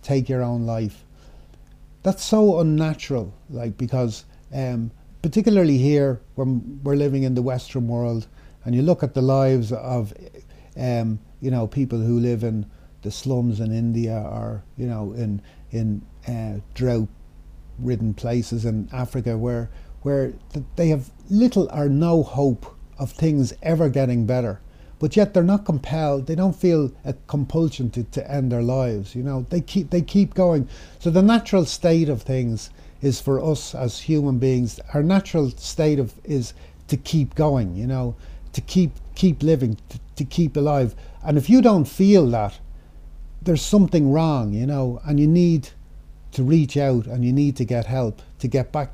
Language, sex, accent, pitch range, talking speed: English, male, Irish, 115-150 Hz, 170 wpm